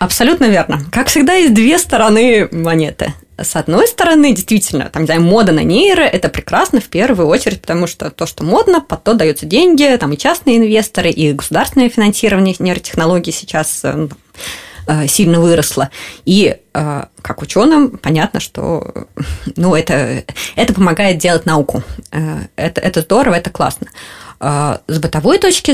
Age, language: 20-39, Russian